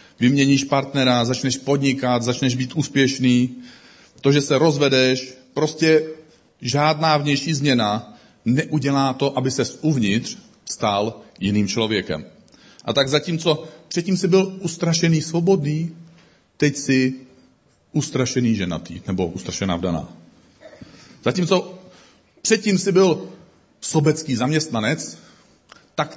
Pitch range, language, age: 125-170 Hz, Czech, 40-59